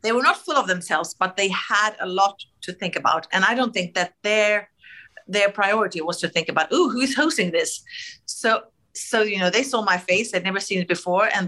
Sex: female